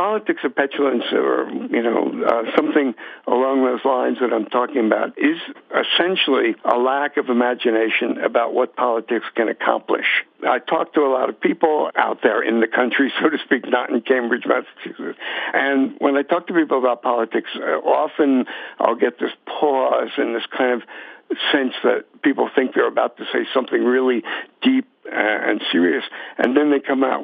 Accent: American